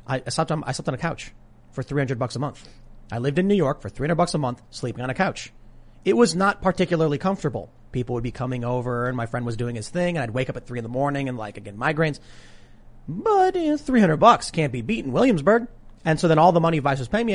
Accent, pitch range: American, 120-155 Hz